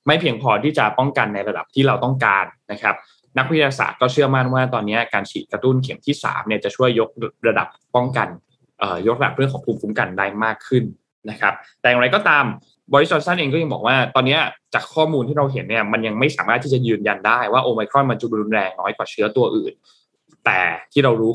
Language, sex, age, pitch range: Thai, male, 20-39, 110-140 Hz